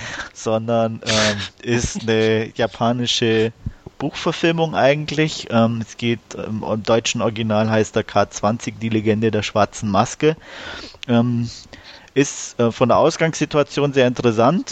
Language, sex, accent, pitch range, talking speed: German, male, German, 105-125 Hz, 120 wpm